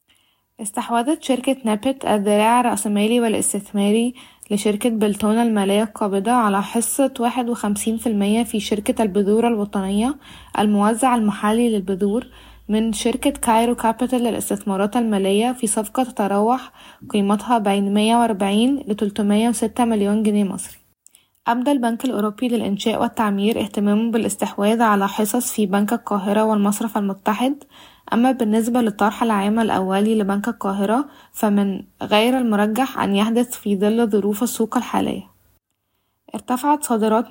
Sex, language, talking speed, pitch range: female, Arabic, 115 wpm, 205-240 Hz